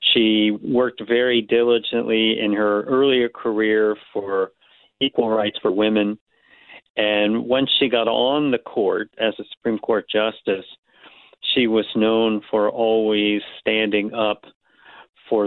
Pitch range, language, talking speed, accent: 105-120 Hz, English, 130 wpm, American